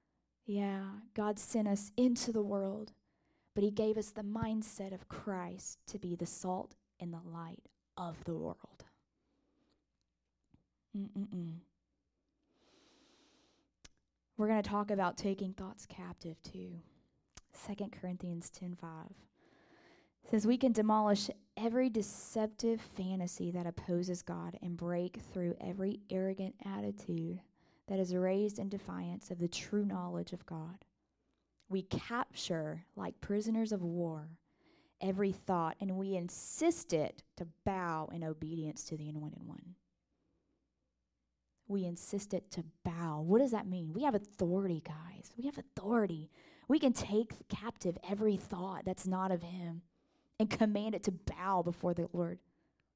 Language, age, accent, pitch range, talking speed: English, 20-39, American, 175-210 Hz, 135 wpm